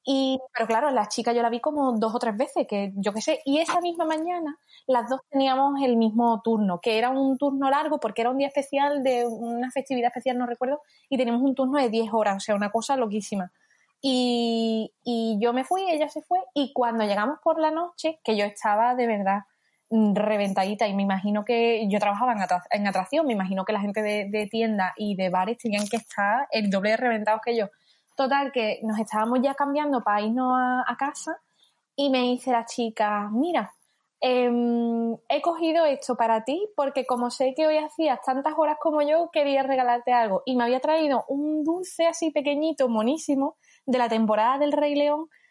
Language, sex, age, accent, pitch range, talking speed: Spanish, female, 20-39, Spanish, 225-285 Hz, 205 wpm